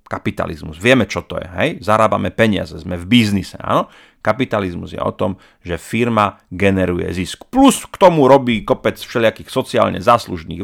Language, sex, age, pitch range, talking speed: Slovak, male, 40-59, 95-120 Hz, 160 wpm